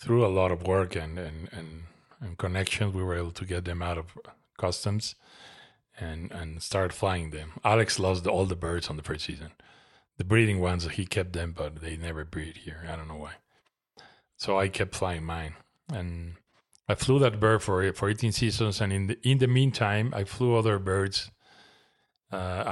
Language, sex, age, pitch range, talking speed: English, male, 30-49, 85-105 Hz, 195 wpm